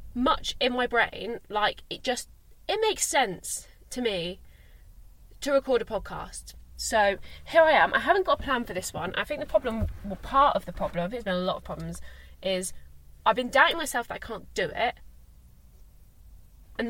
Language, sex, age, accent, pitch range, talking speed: English, female, 20-39, British, 175-230 Hz, 190 wpm